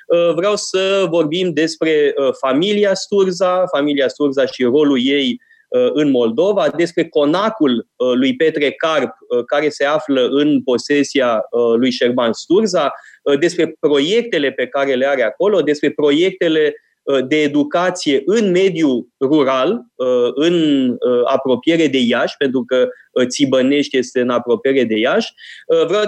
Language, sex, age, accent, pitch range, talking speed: Romanian, male, 20-39, native, 135-180 Hz, 120 wpm